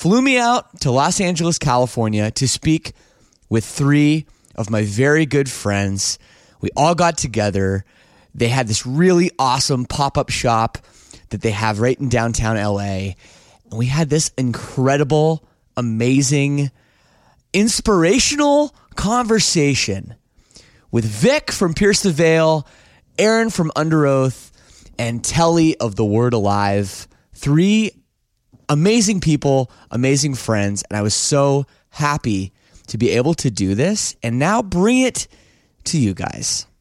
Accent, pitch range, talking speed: American, 110-165 Hz, 130 wpm